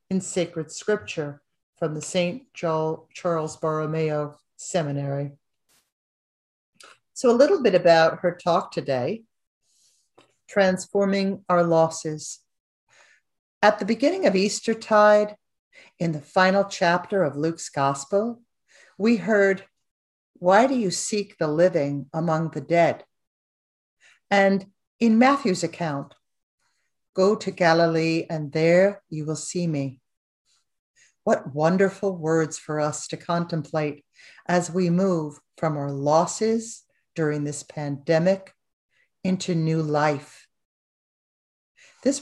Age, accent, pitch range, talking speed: 50-69, American, 155-195 Hz, 110 wpm